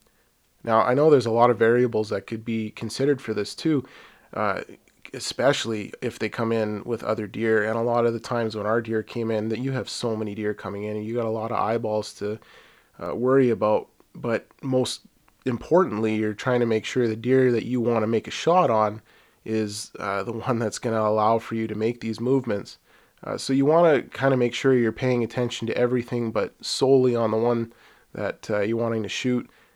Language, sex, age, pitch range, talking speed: English, male, 20-39, 110-125 Hz, 225 wpm